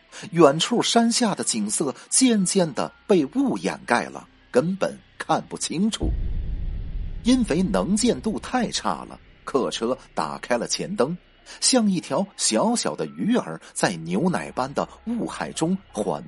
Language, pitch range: Chinese, 140-235 Hz